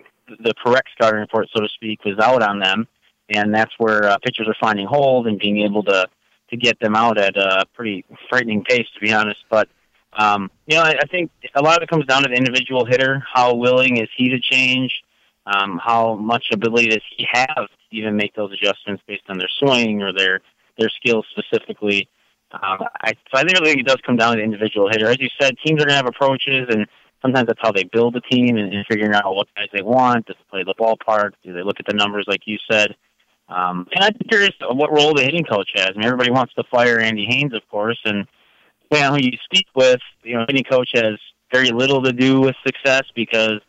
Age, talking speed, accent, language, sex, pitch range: 30-49, 235 wpm, American, English, male, 105-130 Hz